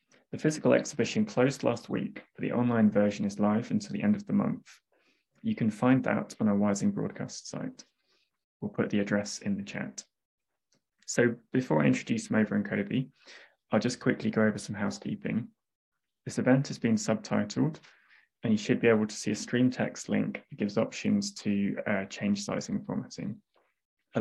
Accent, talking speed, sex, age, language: British, 180 wpm, male, 20-39, English